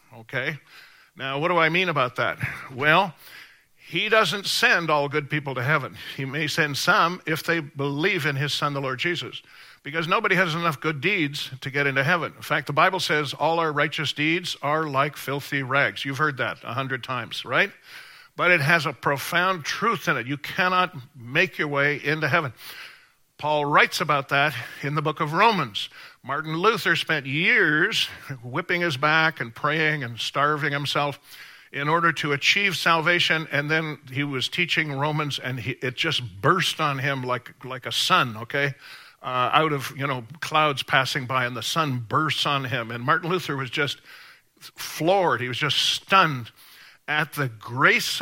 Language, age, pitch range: English, 50-69, 135-165 Hz